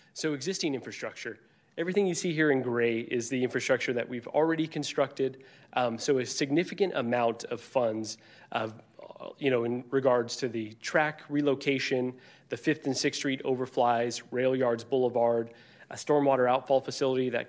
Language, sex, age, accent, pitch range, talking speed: English, male, 30-49, American, 120-140 Hz, 160 wpm